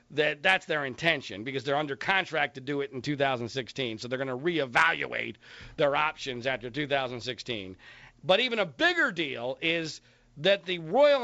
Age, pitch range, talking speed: 40-59, 135-210 Hz, 165 wpm